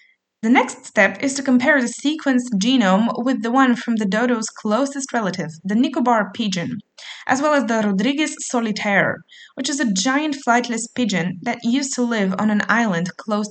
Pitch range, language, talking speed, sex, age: 200-260 Hz, French, 180 wpm, female, 20-39